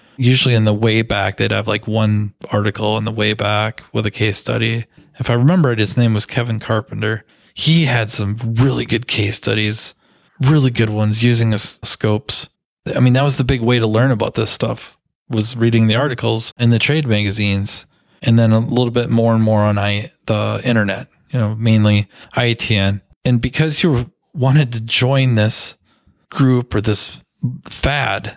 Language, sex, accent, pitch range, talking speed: English, male, American, 110-130 Hz, 180 wpm